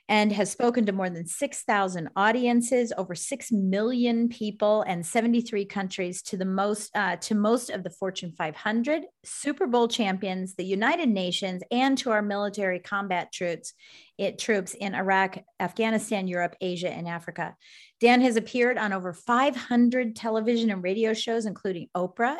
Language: English